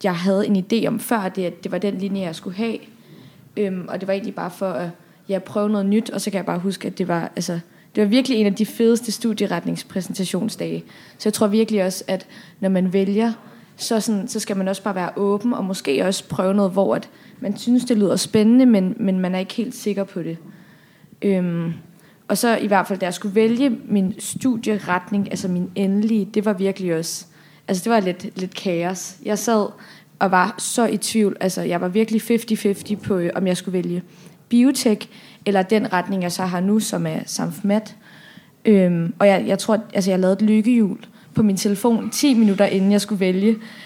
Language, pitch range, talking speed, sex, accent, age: Danish, 185-215 Hz, 215 wpm, female, native, 20-39